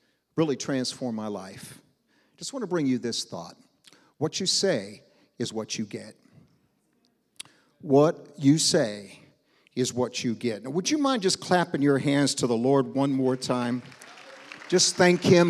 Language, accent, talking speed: English, American, 165 wpm